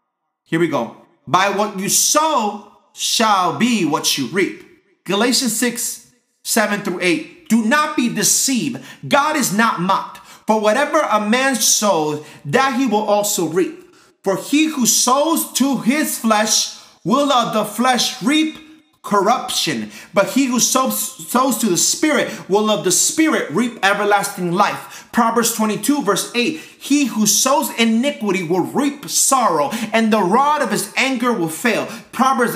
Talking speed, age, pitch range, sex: 155 wpm, 30-49, 190-265 Hz, male